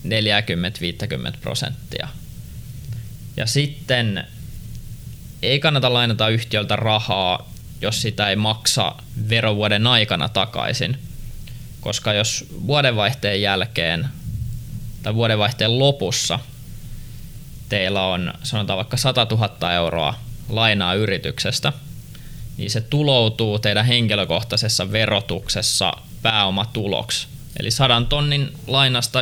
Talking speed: 90 wpm